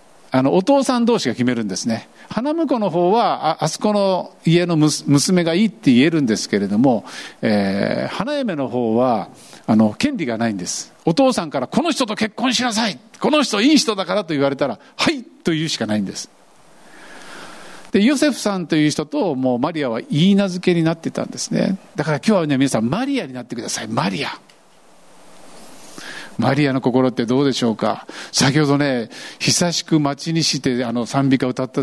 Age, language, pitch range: 50-69, Japanese, 130-205 Hz